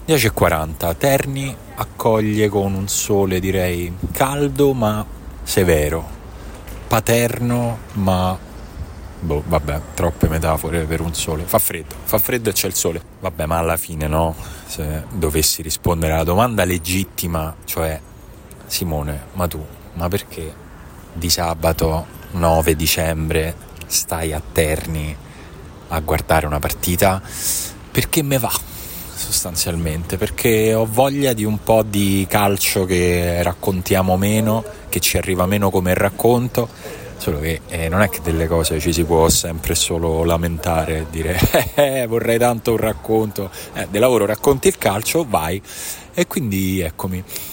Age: 30-49